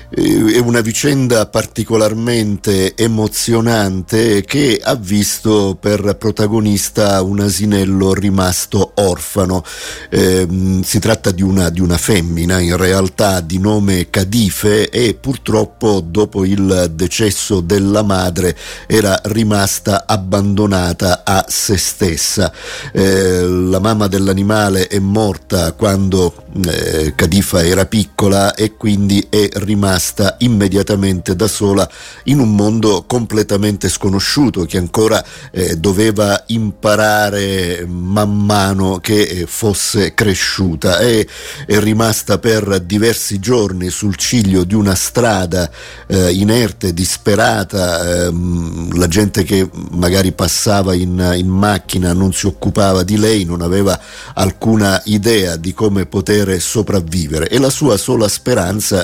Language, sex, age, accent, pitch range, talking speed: Italian, male, 50-69, native, 95-105 Hz, 115 wpm